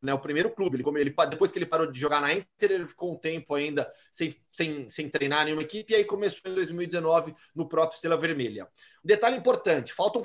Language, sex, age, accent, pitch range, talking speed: Portuguese, male, 30-49, Brazilian, 150-205 Hz, 210 wpm